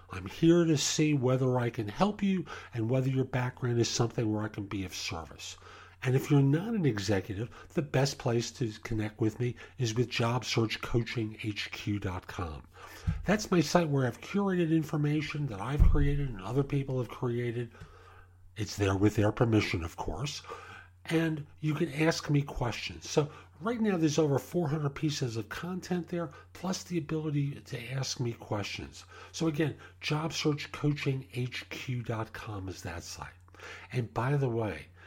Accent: American